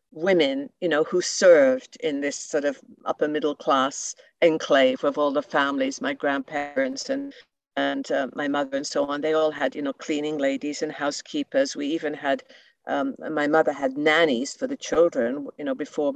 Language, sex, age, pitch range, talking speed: English, female, 50-69, 145-195 Hz, 185 wpm